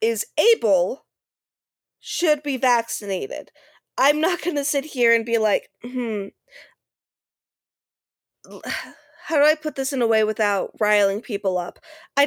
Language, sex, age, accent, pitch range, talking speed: English, female, 20-39, American, 220-285 Hz, 135 wpm